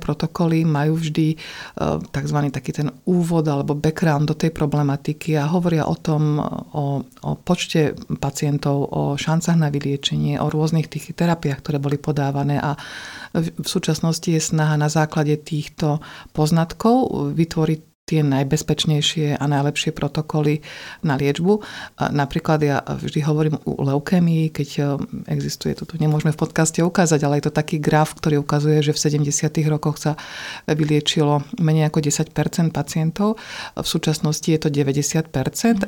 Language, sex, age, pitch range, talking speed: Slovak, female, 50-69, 145-165 Hz, 140 wpm